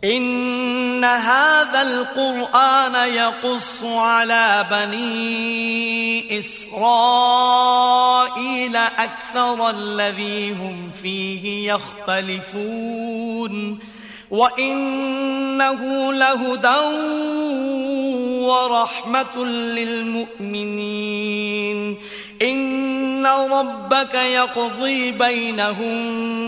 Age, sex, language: 30-49, male, Korean